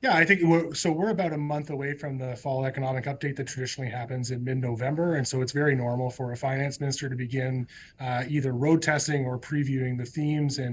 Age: 20-39